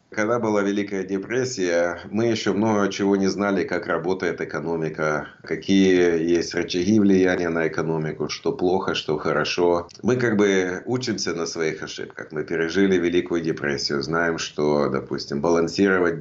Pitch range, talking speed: 75-100 Hz, 145 wpm